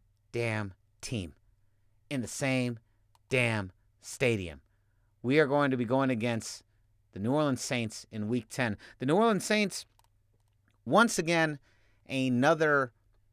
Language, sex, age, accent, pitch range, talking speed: English, male, 30-49, American, 110-145 Hz, 125 wpm